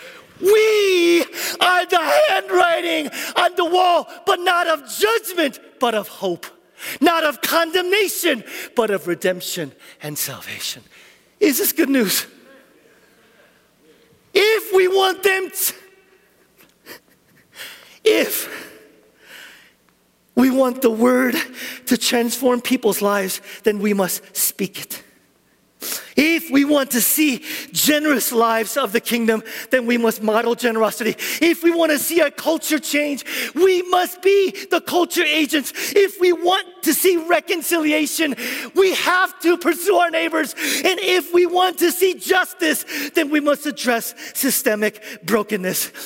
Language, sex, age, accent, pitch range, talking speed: English, male, 50-69, American, 235-360 Hz, 130 wpm